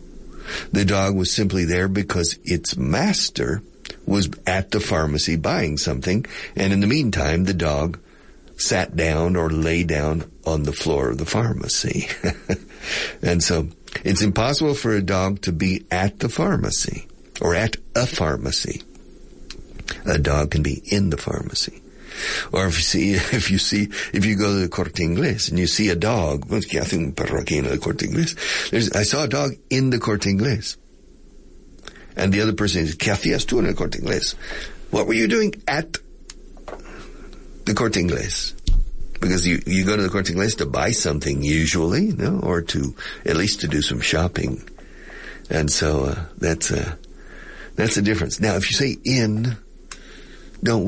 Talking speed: 155 wpm